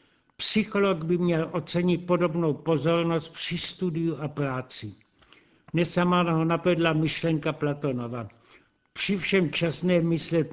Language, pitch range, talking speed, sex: Czech, 155-185 Hz, 110 wpm, male